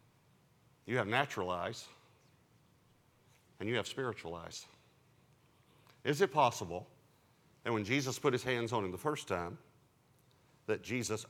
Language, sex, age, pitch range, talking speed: English, male, 50-69, 135-185 Hz, 135 wpm